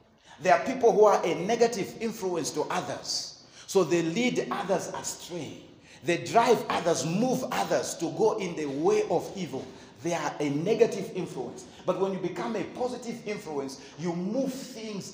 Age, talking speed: 40-59, 165 wpm